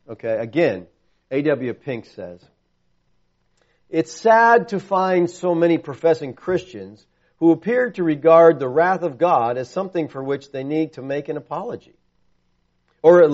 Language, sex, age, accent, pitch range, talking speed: English, male, 50-69, American, 130-185 Hz, 150 wpm